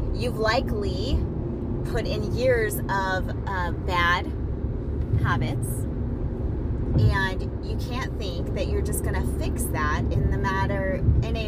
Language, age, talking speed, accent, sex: English, 30-49, 120 wpm, American, female